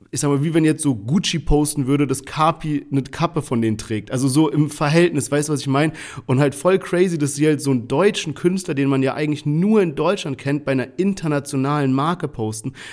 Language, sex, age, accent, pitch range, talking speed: German, male, 40-59, German, 135-165 Hz, 230 wpm